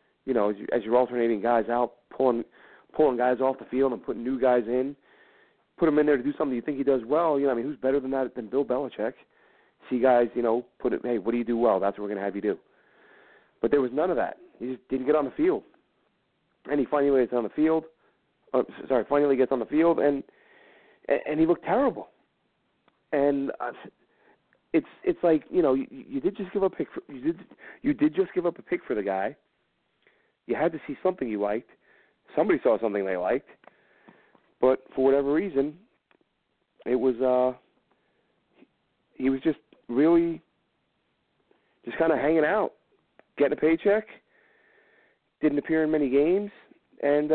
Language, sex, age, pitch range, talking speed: English, male, 40-59, 125-165 Hz, 195 wpm